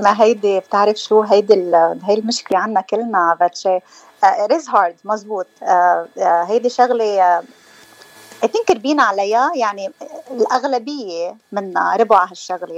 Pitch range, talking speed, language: 200-270 Hz, 110 wpm, Arabic